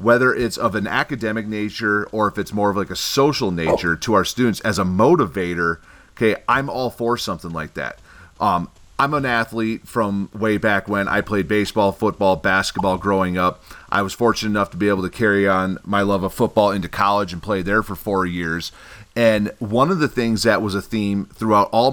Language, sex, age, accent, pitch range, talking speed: English, male, 30-49, American, 95-115 Hz, 210 wpm